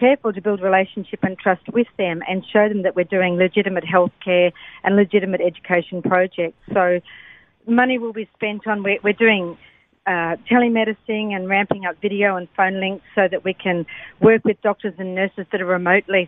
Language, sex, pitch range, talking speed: English, female, 185-215 Hz, 190 wpm